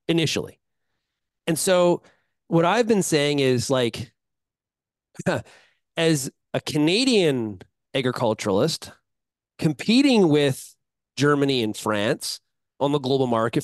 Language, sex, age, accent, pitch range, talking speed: English, male, 30-49, American, 125-170 Hz, 95 wpm